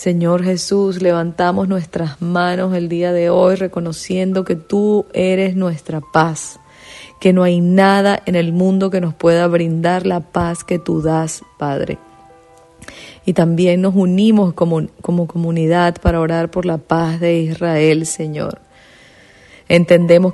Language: English